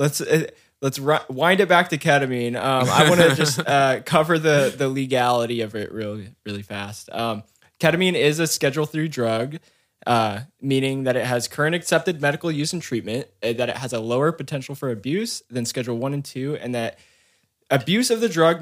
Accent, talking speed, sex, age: American, 195 wpm, male, 20-39